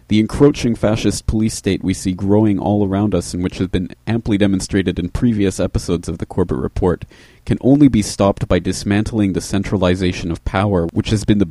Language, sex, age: English, male, 40-59